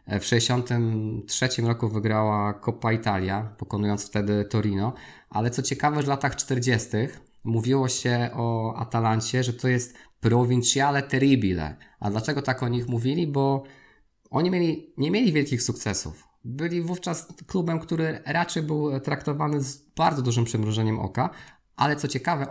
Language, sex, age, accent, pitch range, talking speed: Polish, male, 20-39, native, 110-140 Hz, 140 wpm